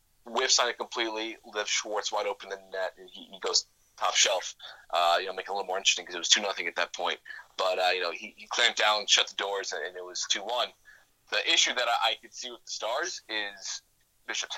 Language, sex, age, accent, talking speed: English, male, 20-39, American, 250 wpm